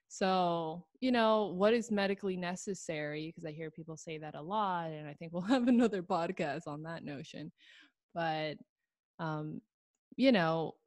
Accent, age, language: American, 20-39, English